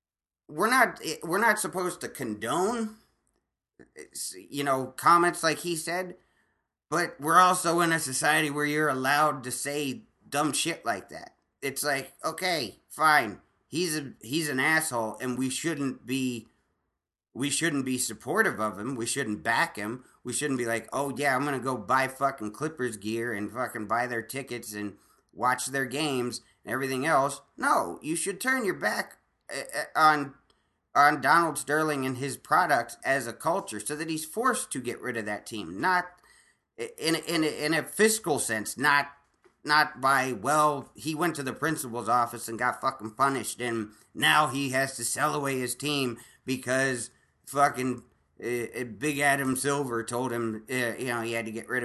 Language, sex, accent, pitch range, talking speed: English, male, American, 120-150 Hz, 175 wpm